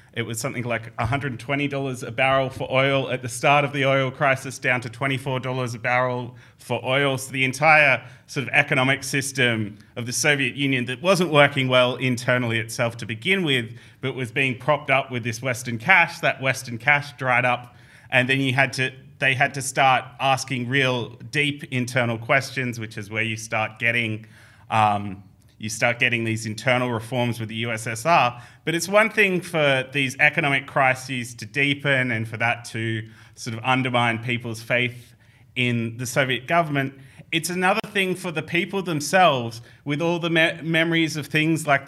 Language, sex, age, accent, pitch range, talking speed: English, male, 30-49, Australian, 120-145 Hz, 180 wpm